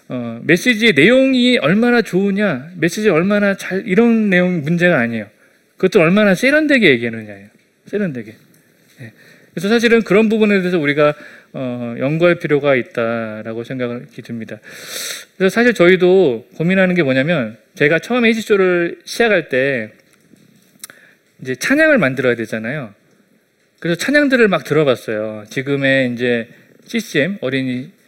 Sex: male